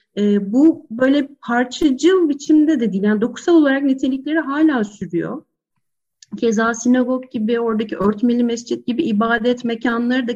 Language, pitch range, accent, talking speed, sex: Turkish, 225-295 Hz, native, 135 wpm, female